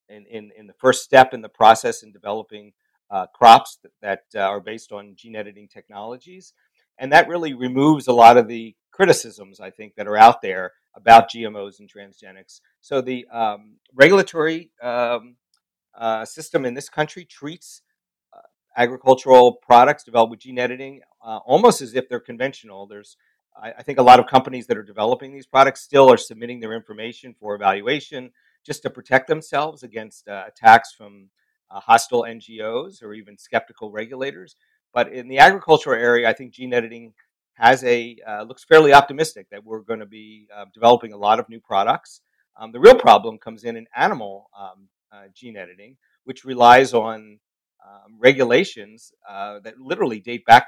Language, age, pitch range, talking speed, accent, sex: English, 50-69, 110-130 Hz, 175 wpm, American, male